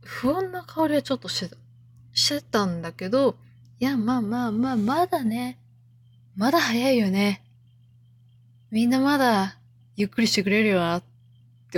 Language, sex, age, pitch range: Japanese, female, 20-39, 170-245 Hz